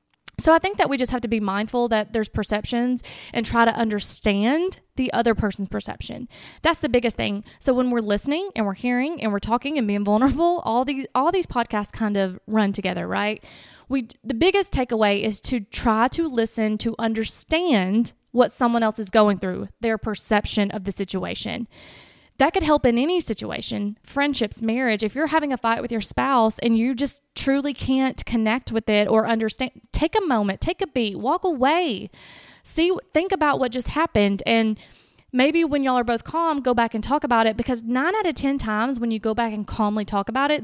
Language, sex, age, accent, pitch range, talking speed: English, female, 20-39, American, 215-270 Hz, 205 wpm